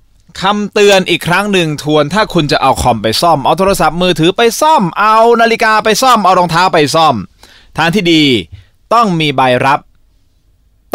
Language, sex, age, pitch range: Thai, male, 20-39, 110-175 Hz